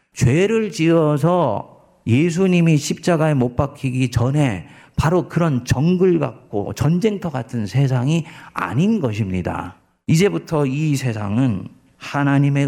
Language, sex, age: Korean, male, 50-69